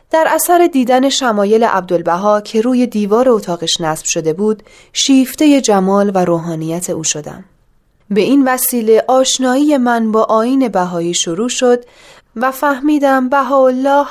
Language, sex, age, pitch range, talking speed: Persian, female, 30-49, 195-265 Hz, 135 wpm